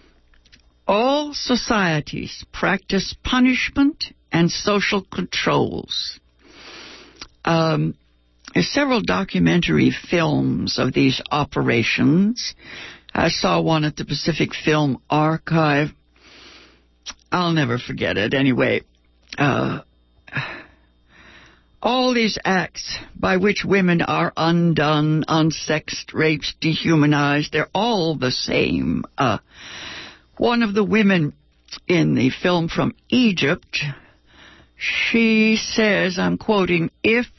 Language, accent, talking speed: English, American, 95 wpm